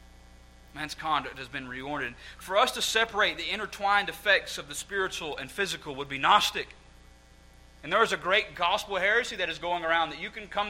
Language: English